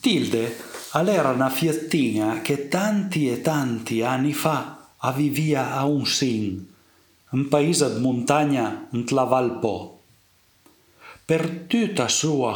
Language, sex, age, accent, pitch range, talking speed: Italian, male, 50-69, native, 125-160 Hz, 115 wpm